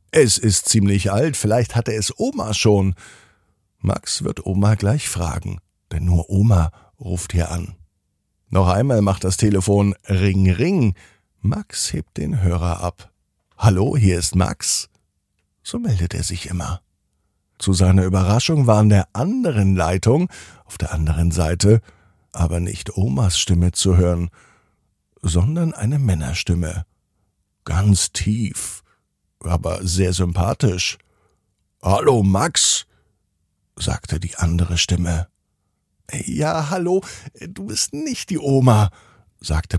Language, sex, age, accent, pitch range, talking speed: German, male, 50-69, German, 90-110 Hz, 120 wpm